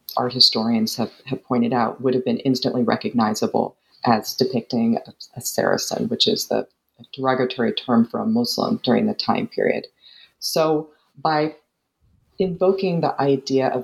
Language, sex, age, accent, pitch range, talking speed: English, female, 40-59, American, 125-150 Hz, 145 wpm